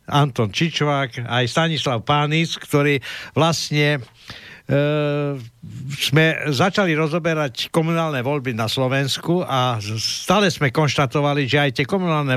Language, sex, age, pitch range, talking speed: English, male, 60-79, 130-160 Hz, 110 wpm